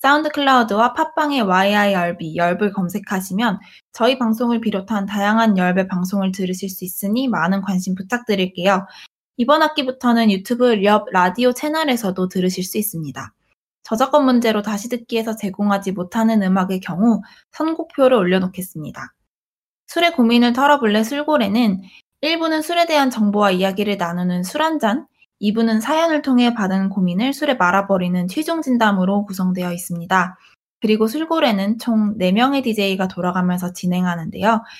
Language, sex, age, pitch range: Korean, female, 20-39, 185-240 Hz